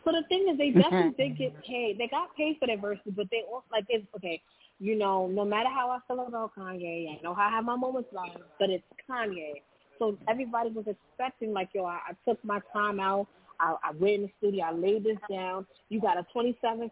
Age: 20-39